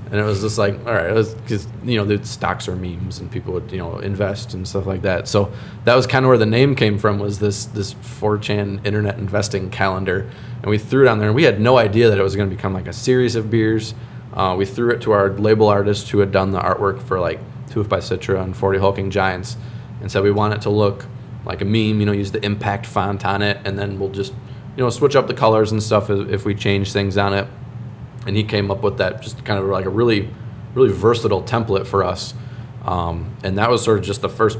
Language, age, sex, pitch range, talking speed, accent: English, 20-39, male, 100-115 Hz, 255 wpm, American